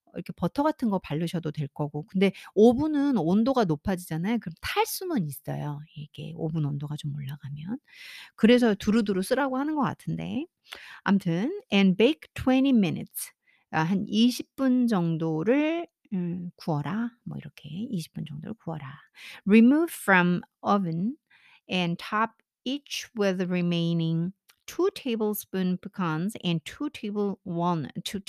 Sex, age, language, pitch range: female, 50-69, Korean, 170-255 Hz